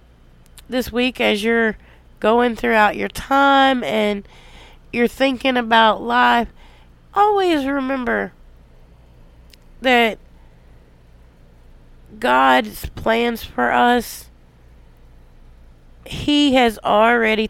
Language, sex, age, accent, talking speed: English, female, 30-49, American, 80 wpm